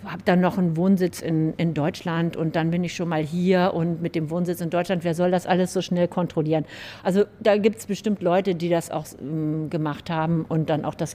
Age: 50-69